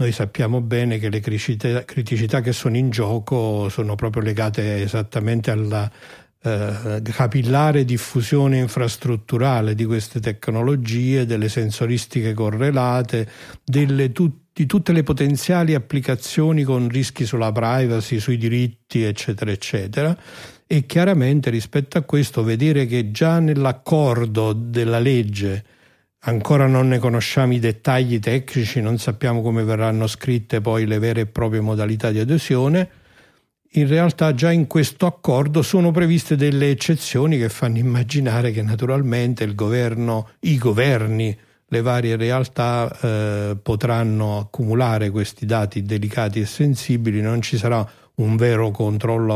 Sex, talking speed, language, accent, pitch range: male, 125 wpm, Italian, native, 110-135 Hz